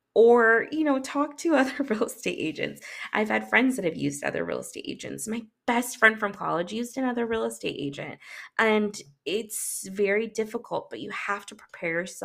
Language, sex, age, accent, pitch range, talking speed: English, female, 20-39, American, 170-220 Hz, 185 wpm